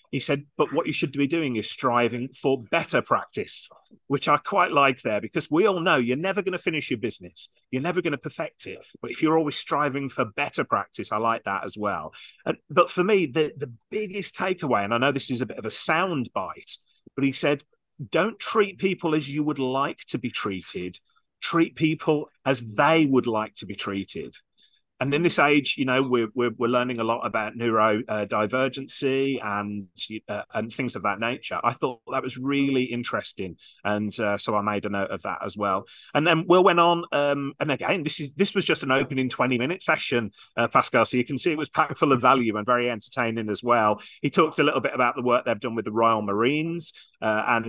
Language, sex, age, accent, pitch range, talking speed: English, male, 30-49, British, 115-155 Hz, 225 wpm